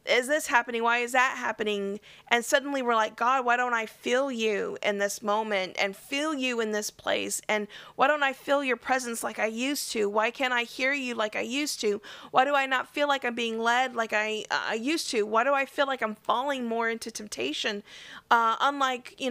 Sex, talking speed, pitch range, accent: female, 225 wpm, 230-275 Hz, American